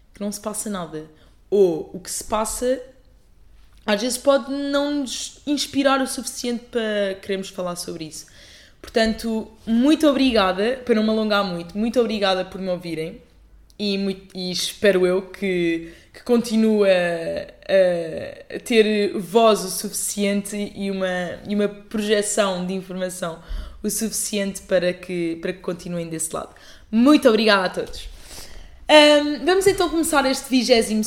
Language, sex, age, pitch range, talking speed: Portuguese, female, 20-39, 165-220 Hz, 135 wpm